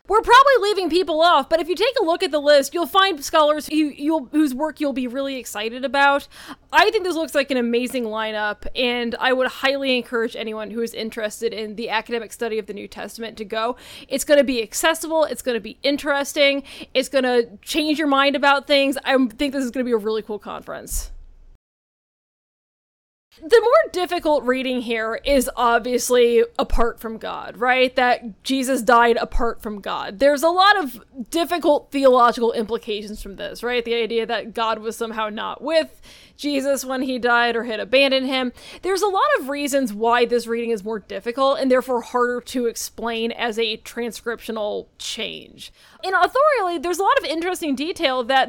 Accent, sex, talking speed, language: American, female, 190 wpm, English